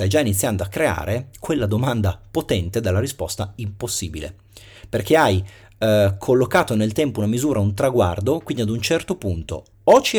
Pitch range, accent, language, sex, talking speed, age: 100-125 Hz, native, Italian, male, 165 wpm, 30-49